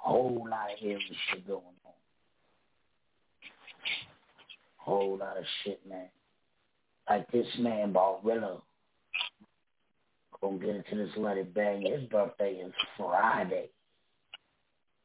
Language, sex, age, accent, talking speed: English, male, 60-79, American, 110 wpm